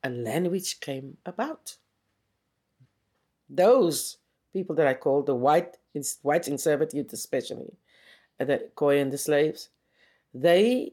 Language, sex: English, female